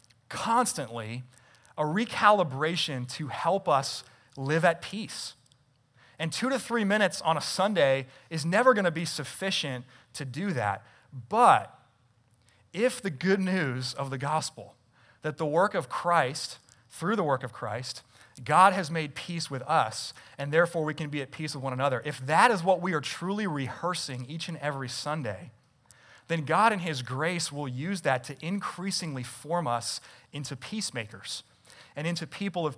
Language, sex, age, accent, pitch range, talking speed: English, male, 30-49, American, 125-165 Hz, 165 wpm